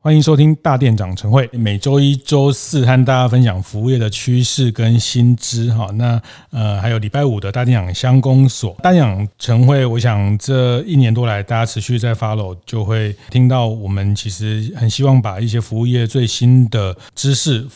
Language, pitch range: Chinese, 105-125 Hz